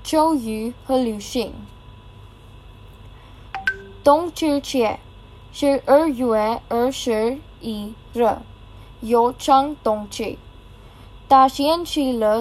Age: 10-29